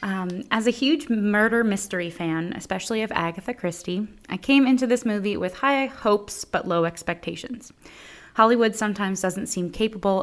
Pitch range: 170-220 Hz